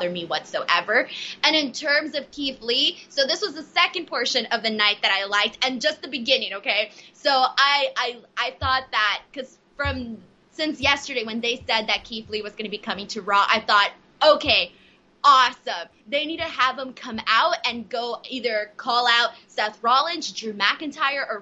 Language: English